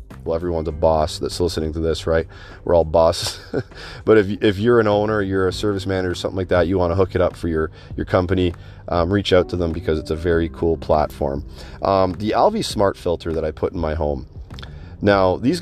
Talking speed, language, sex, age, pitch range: 230 wpm, English, male, 30-49, 85-100 Hz